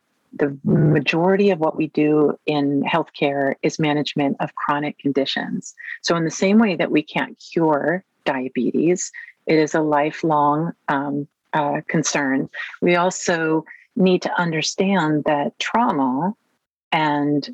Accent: American